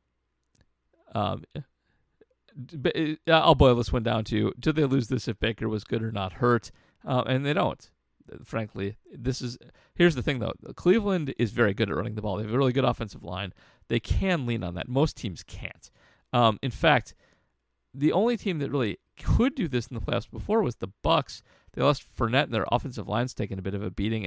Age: 40-59